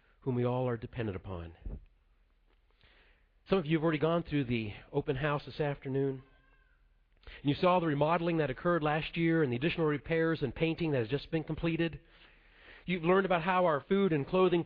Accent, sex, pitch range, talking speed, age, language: American, male, 110-165 Hz, 190 wpm, 40-59, English